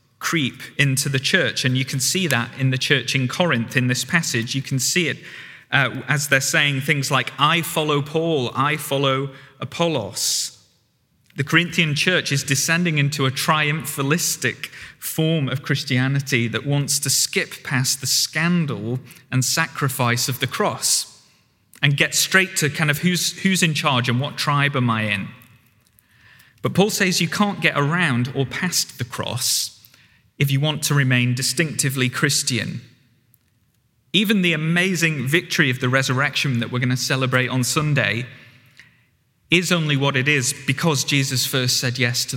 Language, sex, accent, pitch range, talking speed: English, male, British, 125-150 Hz, 165 wpm